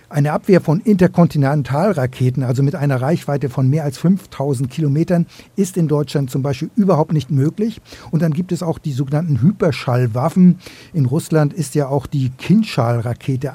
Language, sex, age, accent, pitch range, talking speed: German, male, 60-79, German, 135-175 Hz, 160 wpm